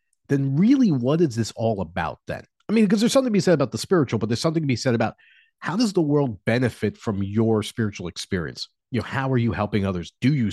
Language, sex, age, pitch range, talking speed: English, male, 30-49, 105-155 Hz, 250 wpm